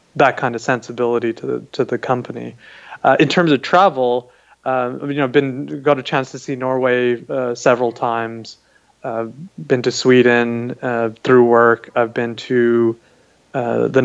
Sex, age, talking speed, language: male, 20-39, 180 wpm, English